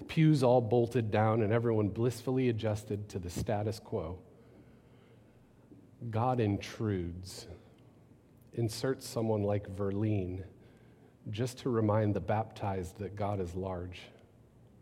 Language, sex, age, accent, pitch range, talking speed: English, male, 40-59, American, 100-125 Hz, 110 wpm